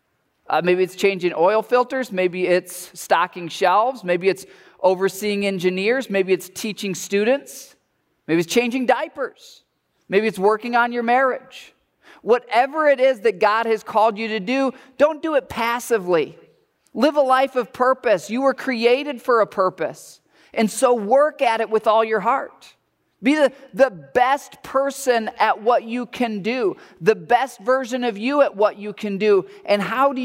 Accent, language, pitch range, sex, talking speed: American, English, 205-260 Hz, male, 170 wpm